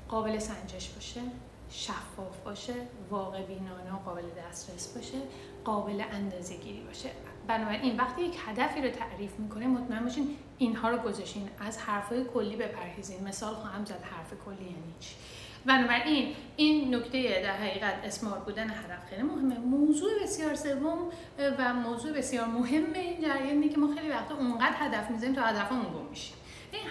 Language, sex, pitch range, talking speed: Persian, female, 210-275 Hz, 155 wpm